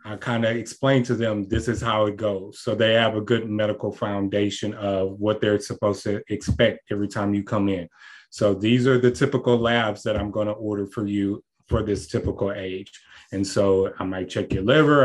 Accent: American